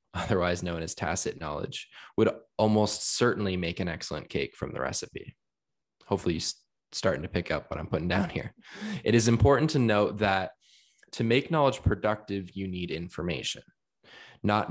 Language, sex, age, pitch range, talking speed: English, male, 20-39, 90-110 Hz, 165 wpm